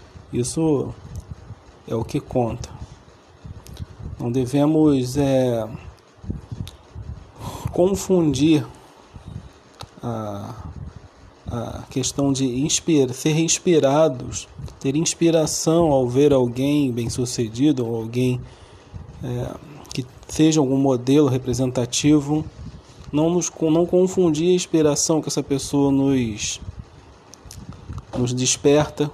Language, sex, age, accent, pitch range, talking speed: Portuguese, male, 40-59, Brazilian, 115-150 Hz, 75 wpm